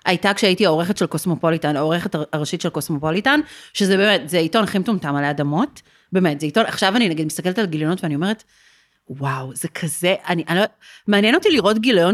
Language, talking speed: Hebrew, 185 wpm